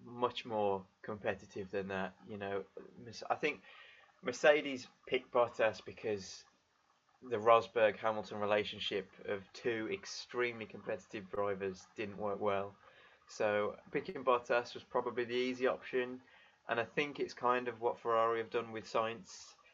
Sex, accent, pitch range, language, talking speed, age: male, British, 105-125 Hz, English, 135 wpm, 20-39